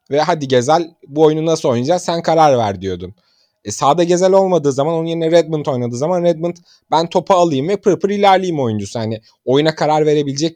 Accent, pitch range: native, 120-175 Hz